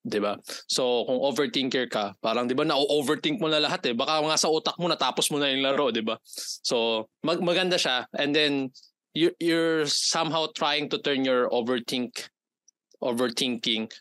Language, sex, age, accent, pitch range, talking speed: Filipino, male, 20-39, native, 120-155 Hz, 170 wpm